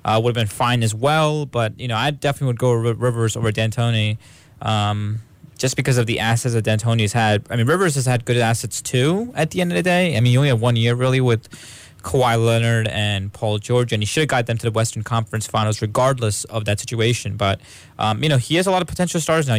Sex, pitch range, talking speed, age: male, 110-135 Hz, 255 wpm, 20-39